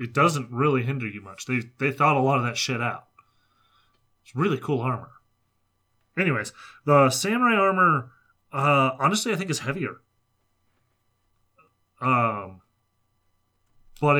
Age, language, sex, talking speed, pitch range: 30-49, English, male, 130 wpm, 110-140 Hz